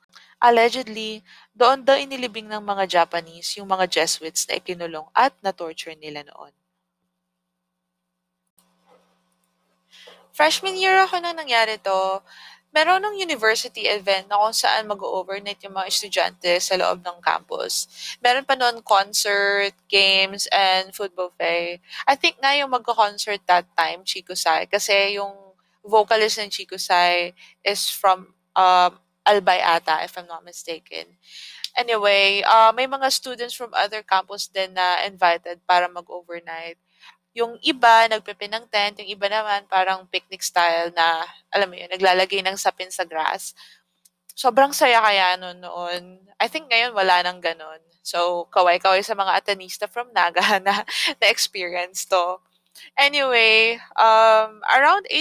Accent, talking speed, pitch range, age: native, 135 wpm, 175-220 Hz, 20-39